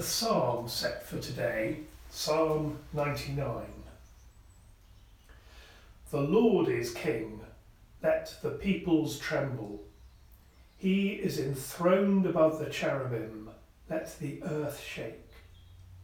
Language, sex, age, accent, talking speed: English, male, 40-59, British, 90 wpm